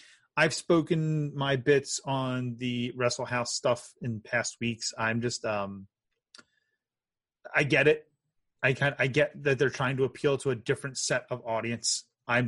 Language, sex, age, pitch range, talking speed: English, male, 30-49, 115-135 Hz, 165 wpm